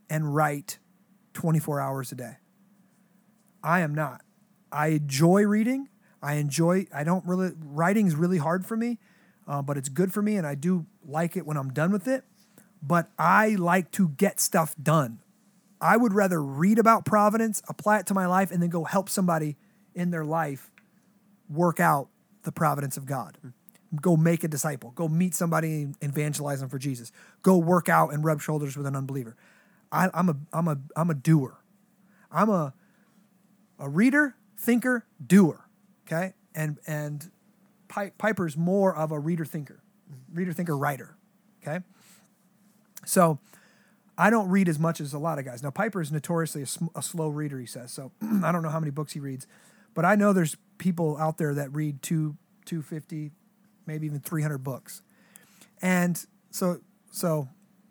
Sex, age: male, 30-49